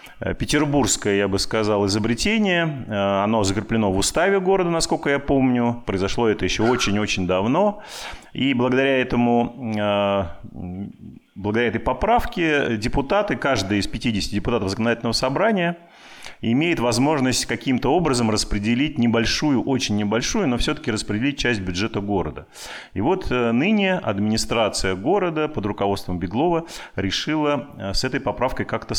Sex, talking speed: male, 120 wpm